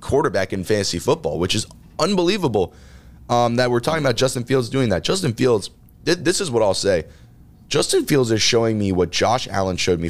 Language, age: English, 20-39